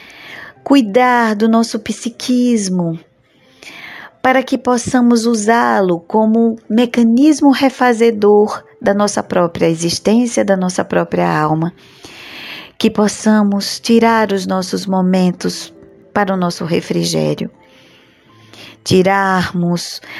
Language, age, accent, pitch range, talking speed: Portuguese, 20-39, Brazilian, 180-225 Hz, 90 wpm